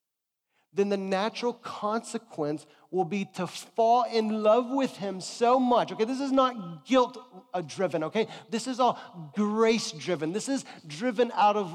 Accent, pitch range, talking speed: American, 165-220 Hz, 150 wpm